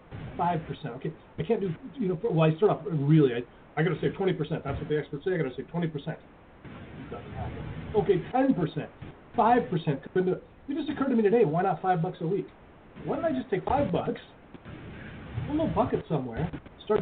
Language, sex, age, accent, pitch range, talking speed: English, male, 40-59, American, 150-205 Hz, 200 wpm